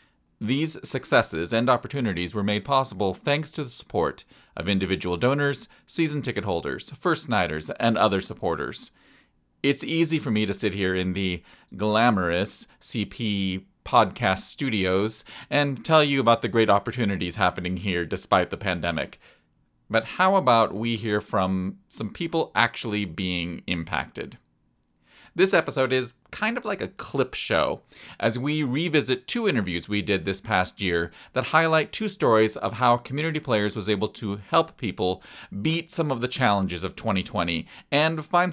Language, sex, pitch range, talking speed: English, male, 95-145 Hz, 155 wpm